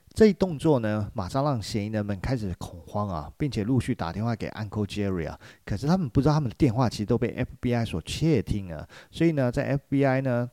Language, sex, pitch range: Chinese, male, 95-135 Hz